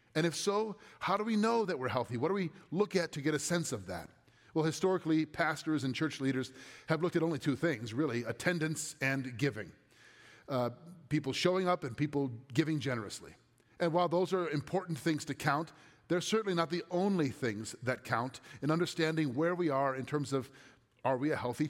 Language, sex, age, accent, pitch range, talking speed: English, male, 40-59, American, 130-180 Hz, 200 wpm